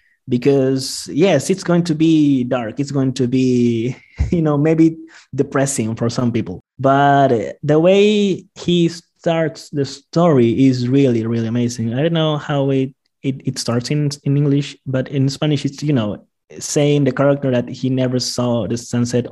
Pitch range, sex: 130-165 Hz, male